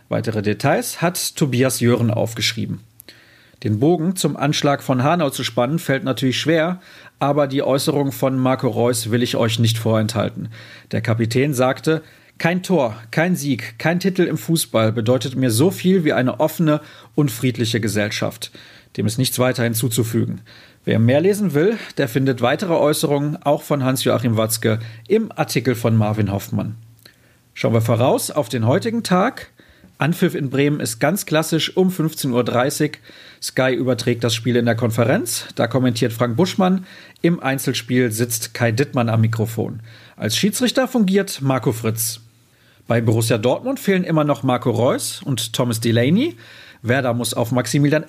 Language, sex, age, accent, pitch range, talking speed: German, male, 40-59, German, 115-155 Hz, 155 wpm